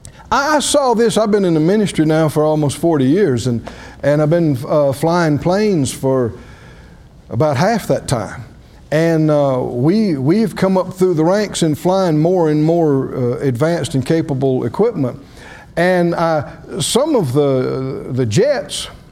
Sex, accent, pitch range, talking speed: male, American, 140-195 Hz, 160 wpm